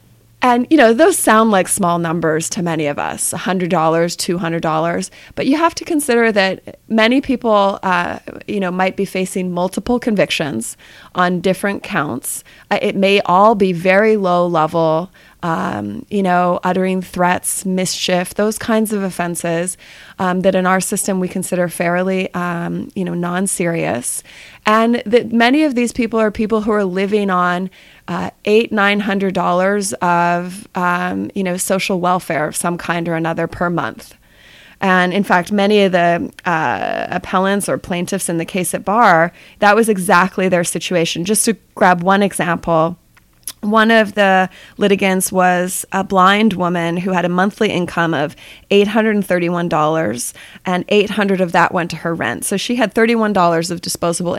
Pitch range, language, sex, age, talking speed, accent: 175-205 Hz, English, female, 30-49, 160 wpm, American